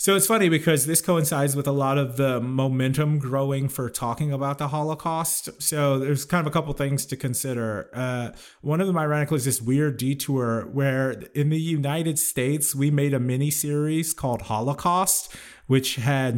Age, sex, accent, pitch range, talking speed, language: 30-49, male, American, 130-150 Hz, 185 wpm, English